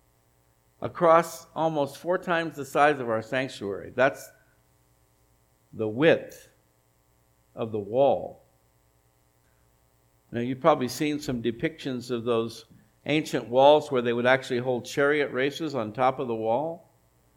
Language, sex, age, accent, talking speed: English, male, 60-79, American, 130 wpm